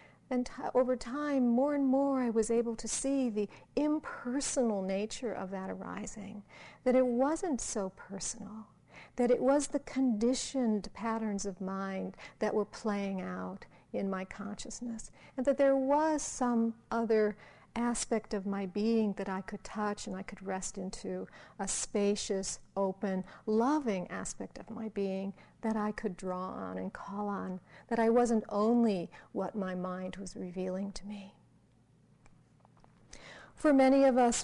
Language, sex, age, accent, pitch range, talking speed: English, female, 50-69, American, 195-245 Hz, 150 wpm